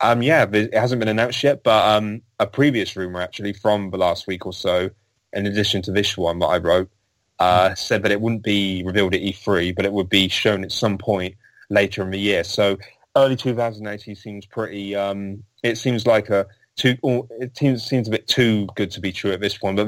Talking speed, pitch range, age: 225 wpm, 95-110 Hz, 20-39